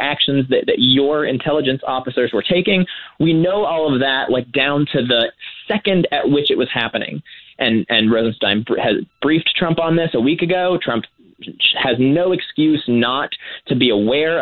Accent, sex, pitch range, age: American, male, 120-175 Hz, 20-39